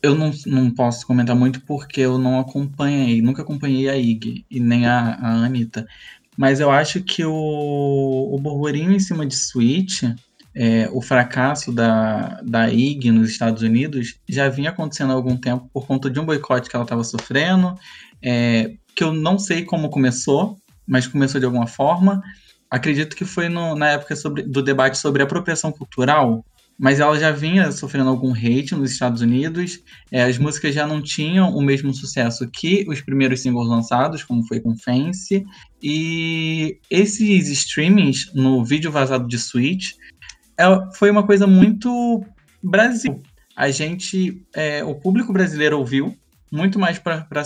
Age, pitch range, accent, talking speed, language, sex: 20-39, 125-165 Hz, Brazilian, 165 wpm, Portuguese, male